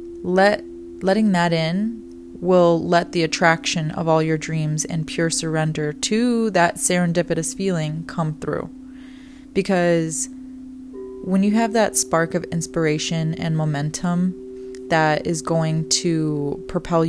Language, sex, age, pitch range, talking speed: English, female, 20-39, 155-195 Hz, 125 wpm